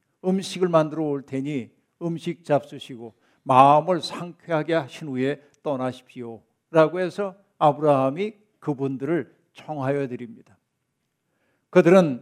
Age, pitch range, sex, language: 60-79, 135-175 Hz, male, Korean